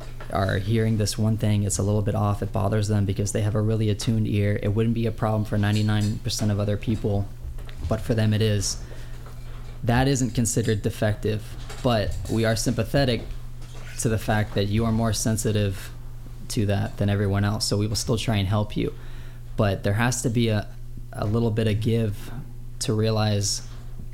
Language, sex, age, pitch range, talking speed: English, male, 20-39, 105-120 Hz, 190 wpm